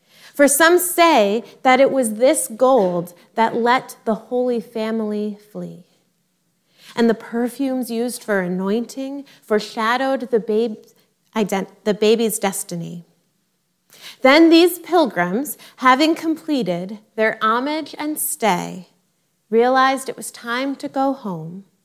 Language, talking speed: English, 115 wpm